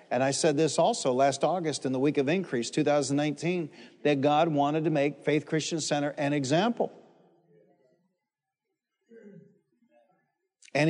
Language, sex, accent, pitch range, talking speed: English, male, American, 130-175 Hz, 130 wpm